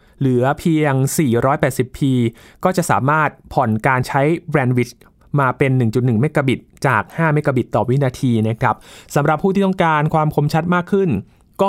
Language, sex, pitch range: Thai, male, 125-155 Hz